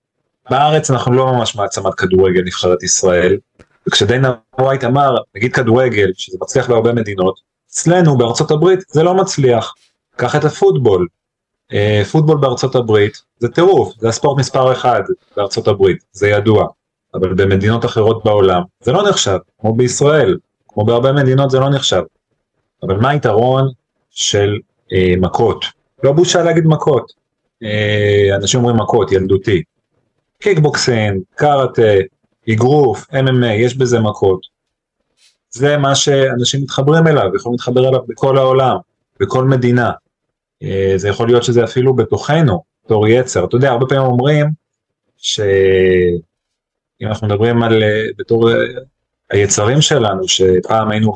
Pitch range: 105-135 Hz